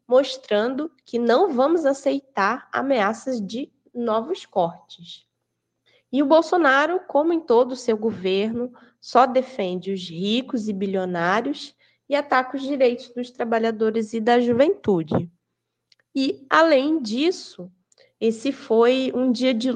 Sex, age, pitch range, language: female, 20-39, 205-260 Hz, Portuguese